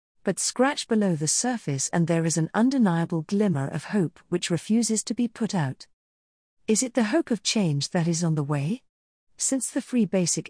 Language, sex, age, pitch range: English, female, 40-59, 155-215 Hz